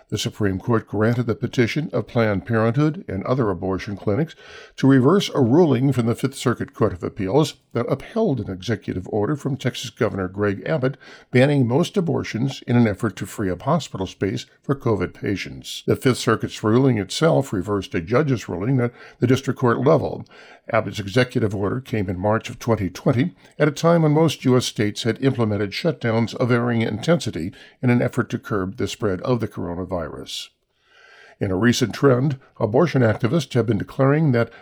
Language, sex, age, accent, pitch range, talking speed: English, male, 50-69, American, 105-140 Hz, 180 wpm